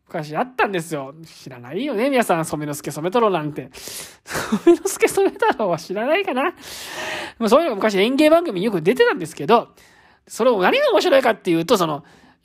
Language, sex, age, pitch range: Japanese, male, 20-39, 200-325 Hz